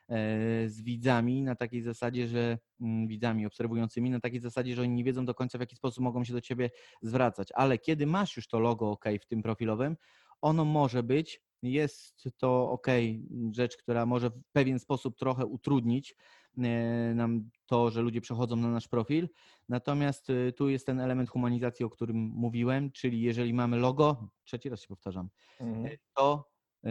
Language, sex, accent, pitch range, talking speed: Polish, male, native, 115-130 Hz, 165 wpm